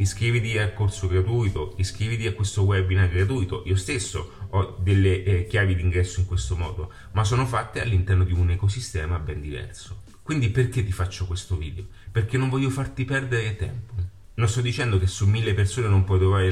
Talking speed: 180 wpm